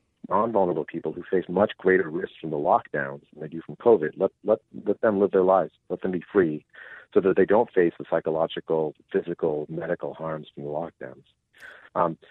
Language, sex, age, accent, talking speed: English, male, 50-69, American, 195 wpm